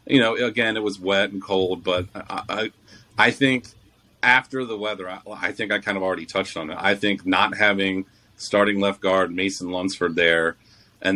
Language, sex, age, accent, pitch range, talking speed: English, male, 30-49, American, 95-110 Hz, 200 wpm